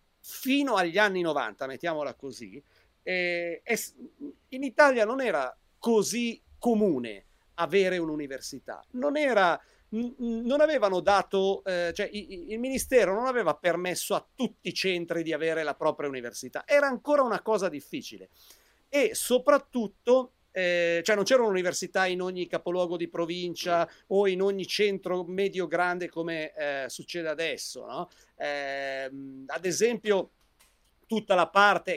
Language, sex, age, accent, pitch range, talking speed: Italian, male, 50-69, native, 165-215 Hz, 135 wpm